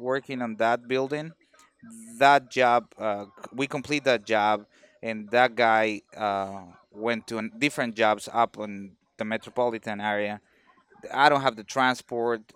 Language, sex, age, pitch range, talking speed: English, male, 30-49, 110-145 Hz, 140 wpm